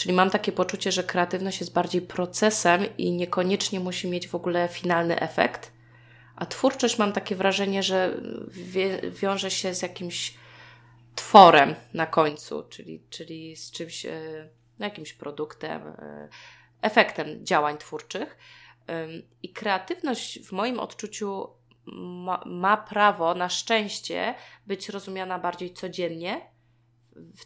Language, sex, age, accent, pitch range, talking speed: Polish, female, 20-39, native, 165-205 Hz, 115 wpm